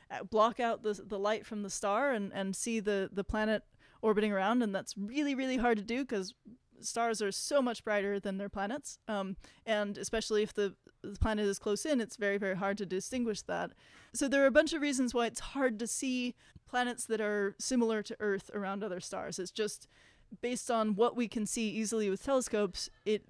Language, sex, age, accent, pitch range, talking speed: English, female, 20-39, American, 200-240 Hz, 210 wpm